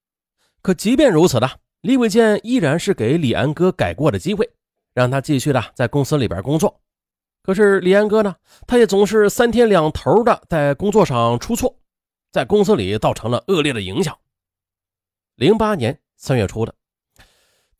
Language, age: Chinese, 30-49